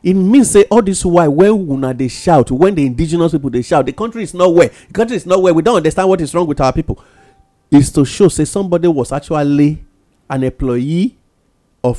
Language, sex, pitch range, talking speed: English, male, 140-195 Hz, 210 wpm